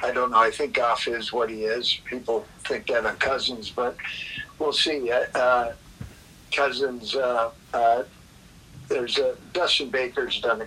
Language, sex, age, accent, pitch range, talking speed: English, male, 50-69, American, 115-140 Hz, 165 wpm